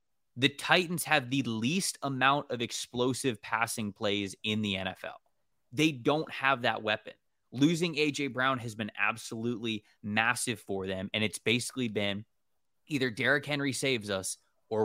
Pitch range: 110-140 Hz